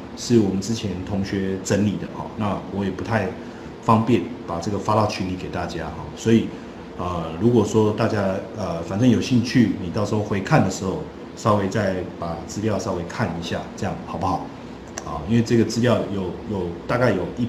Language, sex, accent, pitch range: Chinese, male, native, 95-115 Hz